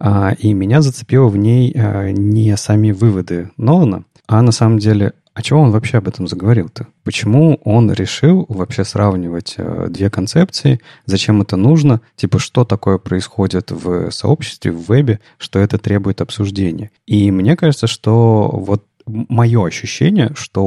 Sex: male